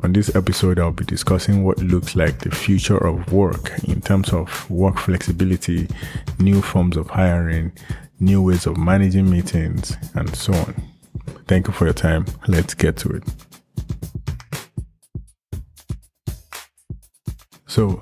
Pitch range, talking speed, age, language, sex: 90-100 Hz, 135 wpm, 20-39, English, male